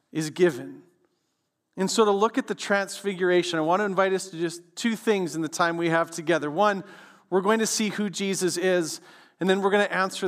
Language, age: English, 40-59